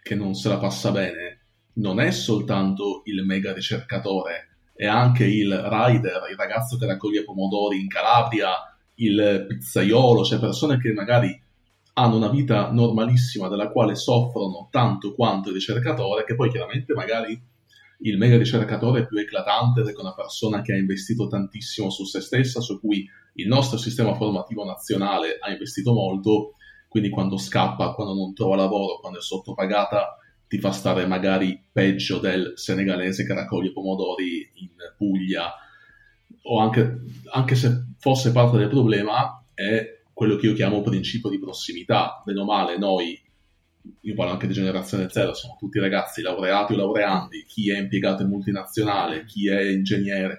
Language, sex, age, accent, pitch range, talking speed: Italian, male, 30-49, native, 95-115 Hz, 155 wpm